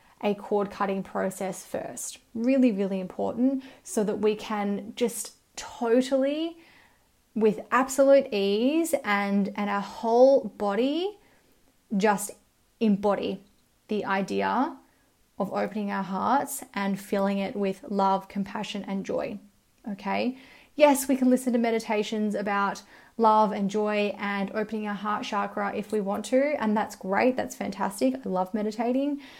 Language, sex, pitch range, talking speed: English, female, 200-250 Hz, 135 wpm